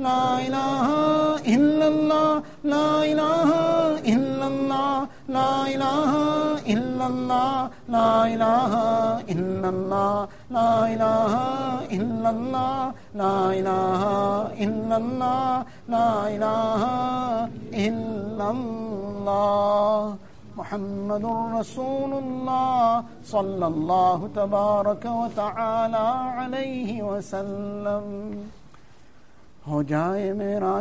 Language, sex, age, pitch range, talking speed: English, male, 50-69, 210-260 Hz, 45 wpm